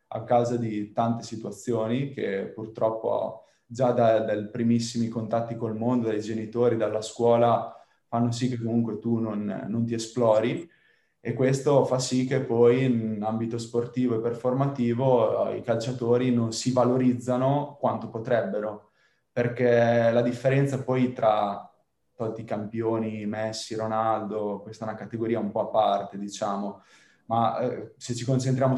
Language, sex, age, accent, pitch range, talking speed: Italian, male, 20-39, native, 110-125 Hz, 140 wpm